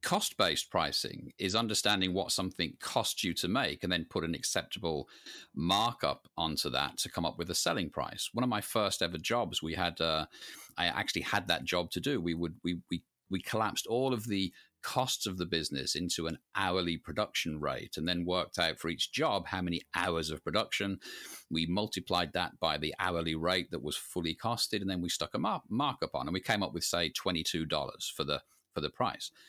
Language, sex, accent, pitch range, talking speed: English, male, British, 80-95 Hz, 210 wpm